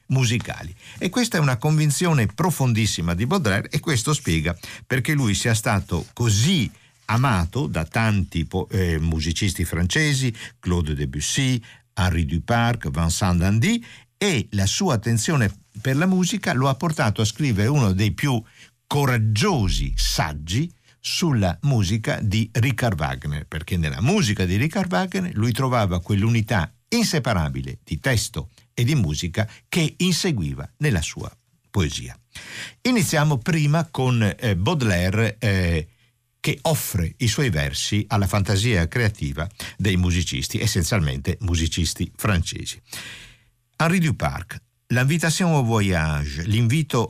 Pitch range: 95-135 Hz